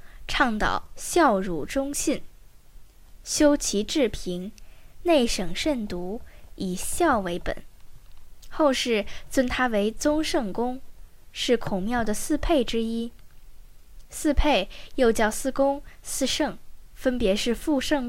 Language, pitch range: Chinese, 210-285 Hz